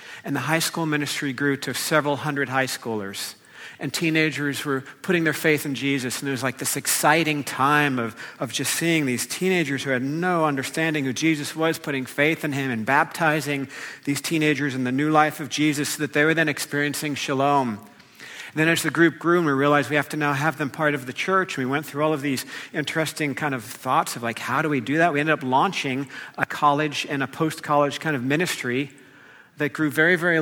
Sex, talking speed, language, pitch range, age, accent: male, 220 wpm, English, 135-155 Hz, 50-69, American